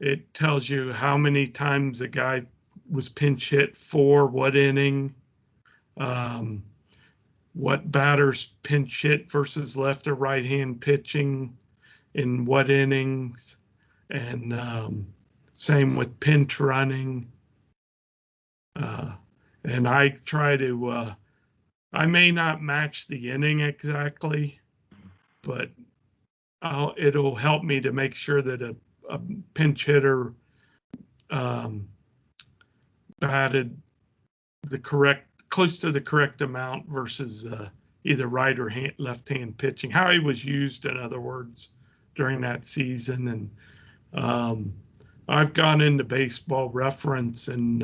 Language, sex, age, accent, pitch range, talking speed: English, male, 50-69, American, 125-145 Hz, 120 wpm